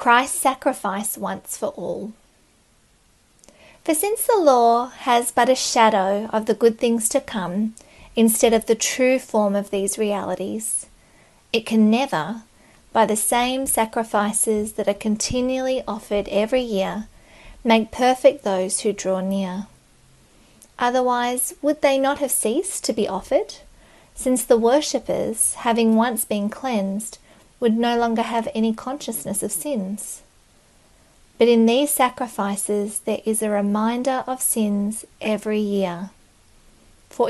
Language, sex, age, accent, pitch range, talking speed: English, female, 40-59, Australian, 210-255 Hz, 135 wpm